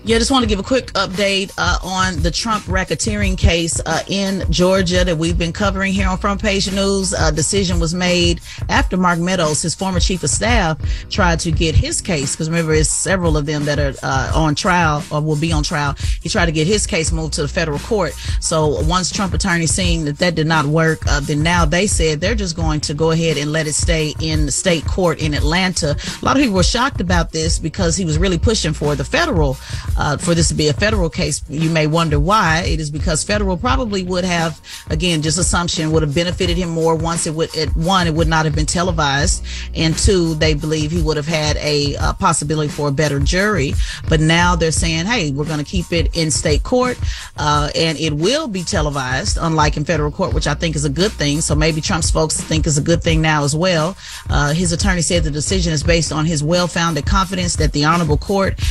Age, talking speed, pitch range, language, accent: 30-49, 235 wpm, 150-180 Hz, English, American